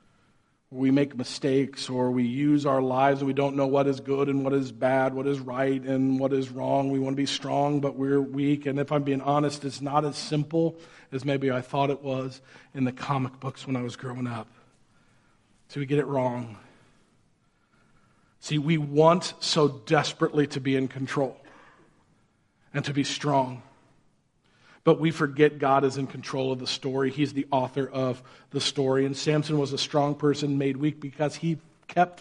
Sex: male